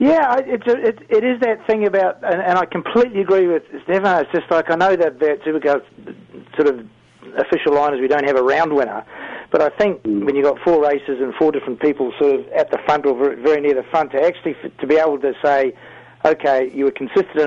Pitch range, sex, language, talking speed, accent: 140-200 Hz, male, English, 235 wpm, Australian